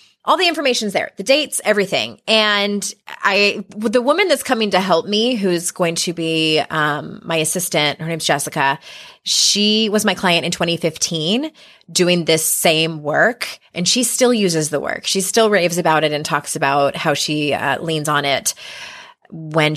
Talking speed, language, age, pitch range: 175 wpm, English, 20-39, 160-210 Hz